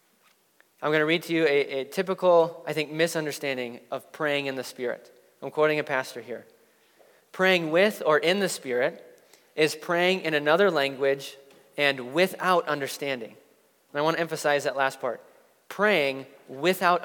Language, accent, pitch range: English, American, 145-195 Hz